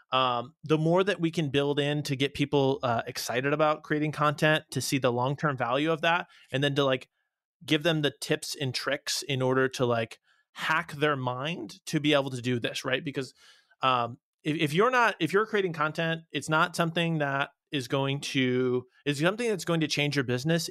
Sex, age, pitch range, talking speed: male, 20-39, 130-155 Hz, 210 wpm